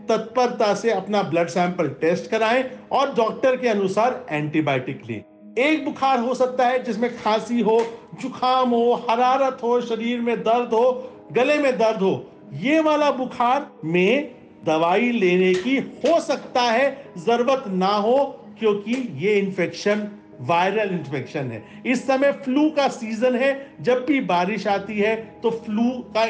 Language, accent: Hindi, native